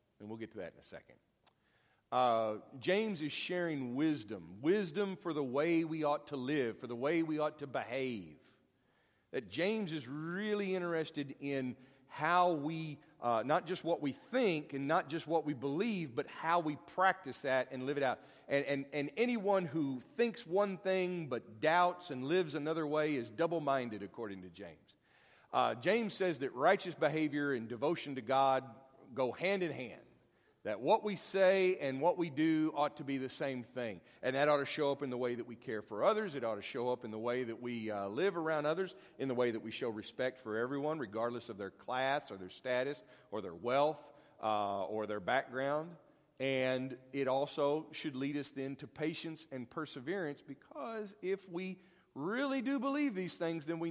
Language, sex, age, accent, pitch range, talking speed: English, male, 40-59, American, 125-170 Hz, 195 wpm